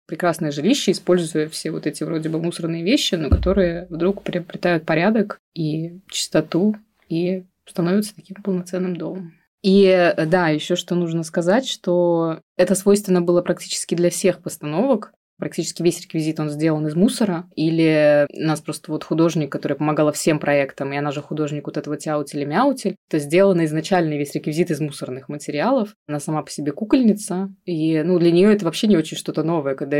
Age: 20-39